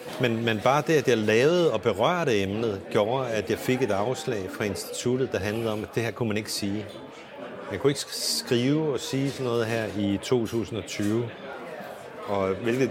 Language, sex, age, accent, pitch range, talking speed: Danish, male, 30-49, native, 100-120 Hz, 190 wpm